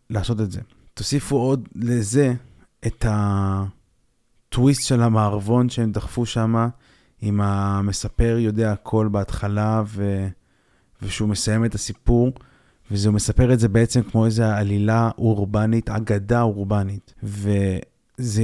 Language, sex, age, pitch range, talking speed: Hebrew, male, 20-39, 105-125 Hz, 115 wpm